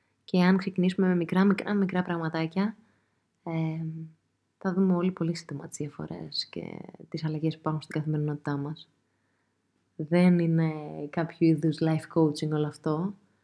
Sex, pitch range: female, 150-180 Hz